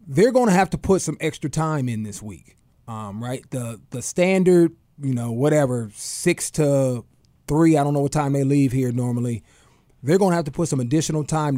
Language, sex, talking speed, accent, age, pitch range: English, male, 210 wpm, American, 30-49, 130-175 Hz